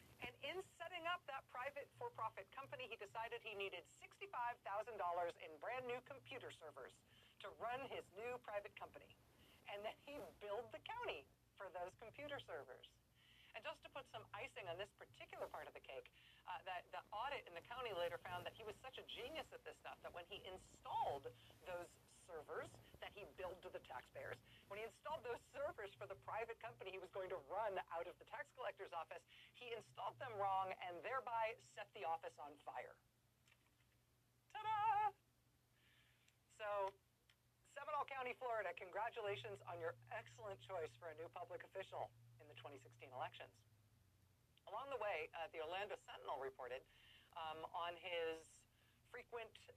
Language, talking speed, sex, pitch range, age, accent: English, 170 wpm, female, 160-245 Hz, 40-59, American